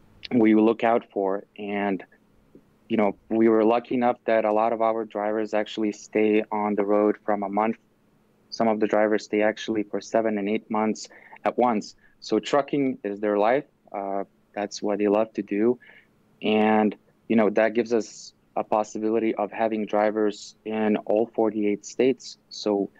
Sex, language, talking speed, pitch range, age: male, English, 170 wpm, 105-110 Hz, 20-39